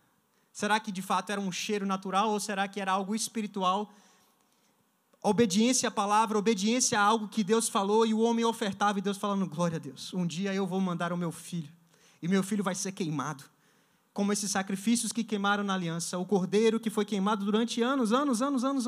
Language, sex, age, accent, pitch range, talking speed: Portuguese, male, 20-39, Brazilian, 190-230 Hz, 205 wpm